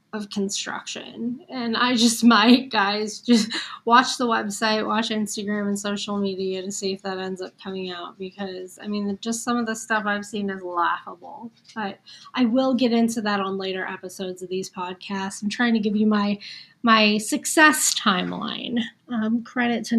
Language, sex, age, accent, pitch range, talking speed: English, female, 20-39, American, 200-245 Hz, 180 wpm